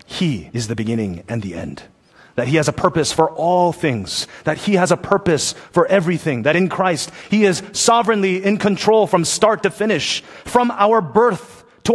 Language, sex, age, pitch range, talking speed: English, male, 30-49, 135-180 Hz, 190 wpm